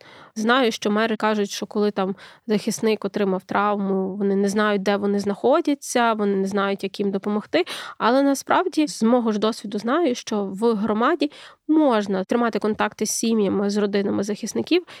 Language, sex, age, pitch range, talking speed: Ukrainian, female, 20-39, 200-235 Hz, 160 wpm